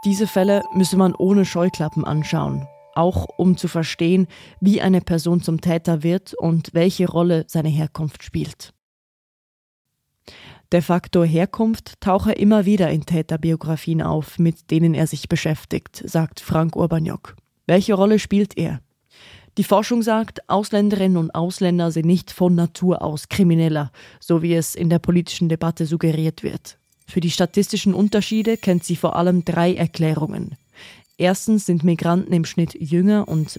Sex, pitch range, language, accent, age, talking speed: female, 165-190 Hz, German, German, 20-39, 145 wpm